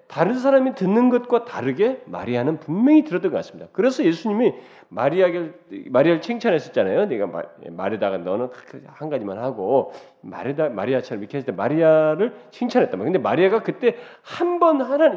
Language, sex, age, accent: Korean, male, 40-59, native